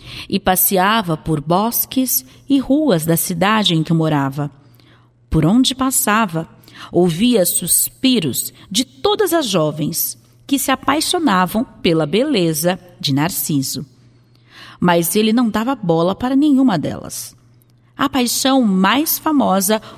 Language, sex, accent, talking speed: Portuguese, female, Brazilian, 115 wpm